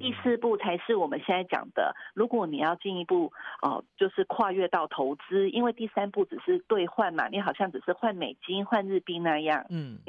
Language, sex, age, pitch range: Chinese, female, 40-59, 175-240 Hz